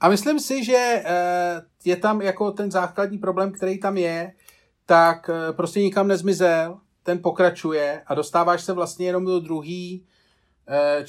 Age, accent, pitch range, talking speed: 40-59, native, 140-175 Hz, 140 wpm